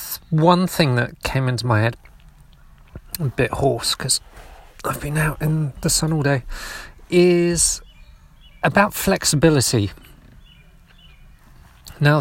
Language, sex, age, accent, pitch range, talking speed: English, male, 40-59, British, 115-140 Hz, 115 wpm